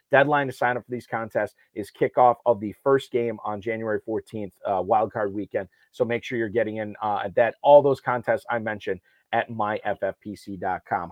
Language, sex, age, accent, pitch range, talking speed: English, male, 30-49, American, 110-125 Hz, 185 wpm